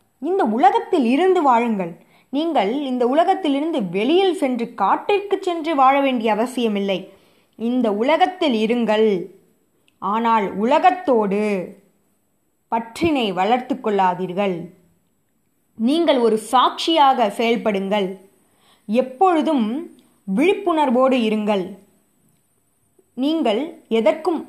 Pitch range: 205-295 Hz